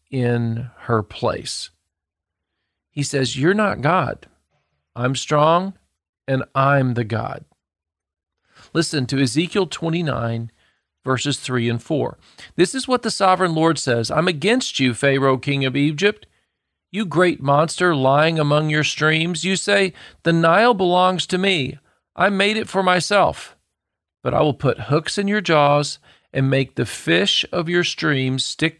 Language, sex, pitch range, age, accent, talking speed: English, male, 115-160 Hz, 40-59, American, 150 wpm